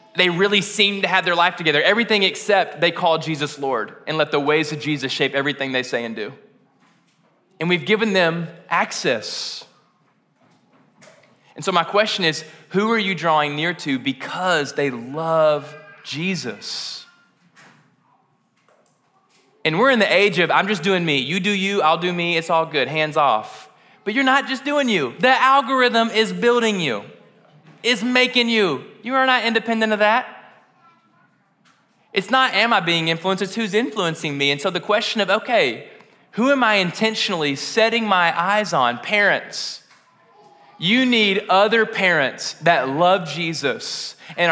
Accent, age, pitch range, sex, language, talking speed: American, 20-39, 155-215 Hz, male, English, 160 wpm